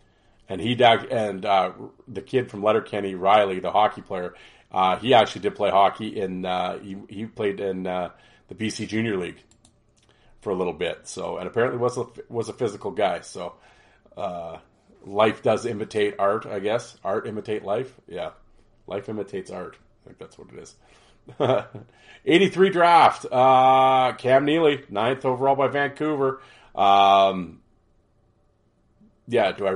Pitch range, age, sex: 105-125 Hz, 40-59, male